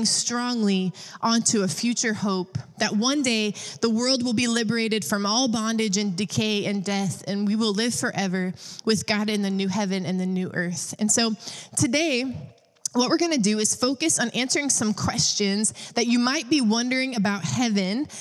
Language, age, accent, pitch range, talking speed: English, 20-39, American, 205-255 Hz, 180 wpm